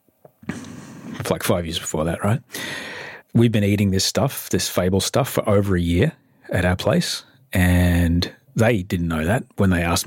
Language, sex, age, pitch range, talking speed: English, male, 30-49, 90-115 Hz, 175 wpm